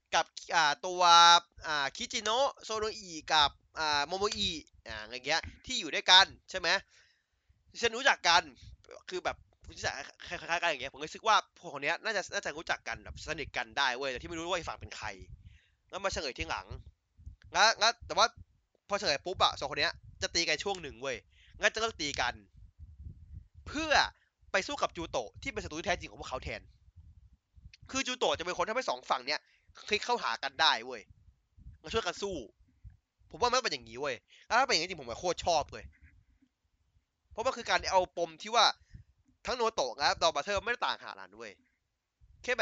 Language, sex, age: Thai, male, 20-39